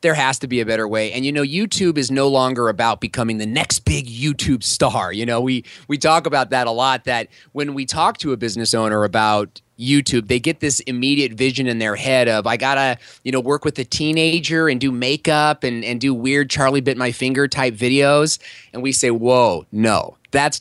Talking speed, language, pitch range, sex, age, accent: 225 wpm, English, 120-160 Hz, male, 30-49, American